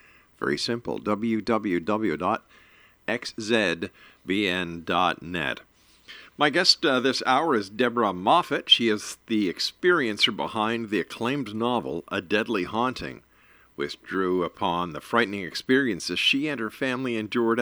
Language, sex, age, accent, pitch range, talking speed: English, male, 50-69, American, 105-135 Hz, 110 wpm